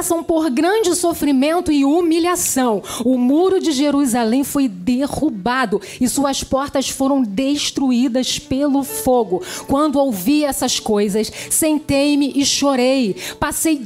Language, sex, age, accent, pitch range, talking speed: Portuguese, female, 40-59, Brazilian, 235-300 Hz, 115 wpm